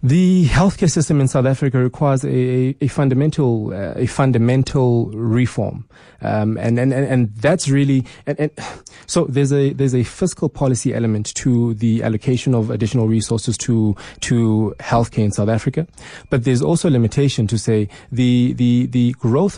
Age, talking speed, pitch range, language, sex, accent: 20-39, 160 wpm, 115-140 Hz, English, male, South African